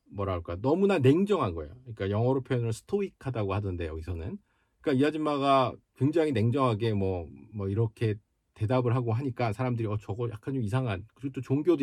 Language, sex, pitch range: Korean, male, 100-130 Hz